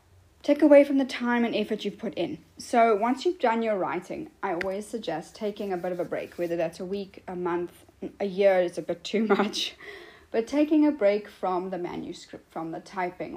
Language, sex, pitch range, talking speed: English, female, 180-230 Hz, 215 wpm